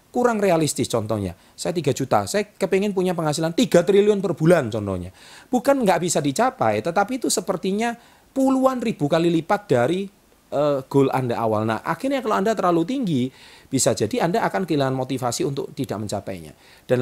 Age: 40-59